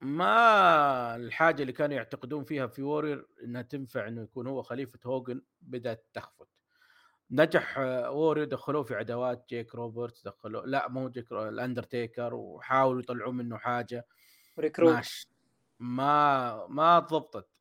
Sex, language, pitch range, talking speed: male, Arabic, 120-160 Hz, 125 wpm